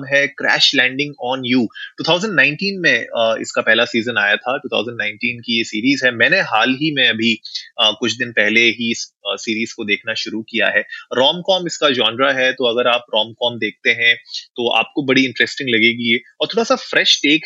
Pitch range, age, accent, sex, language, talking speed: 115-145 Hz, 20-39, native, male, Hindi, 195 wpm